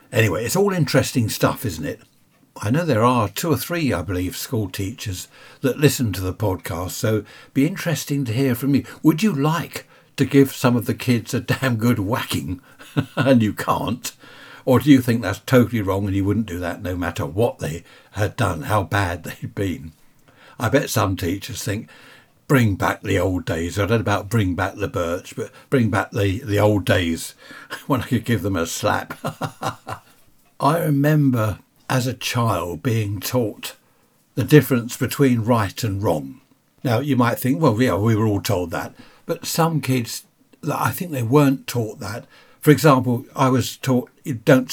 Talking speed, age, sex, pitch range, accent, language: 190 wpm, 60-79, male, 105-135 Hz, British, English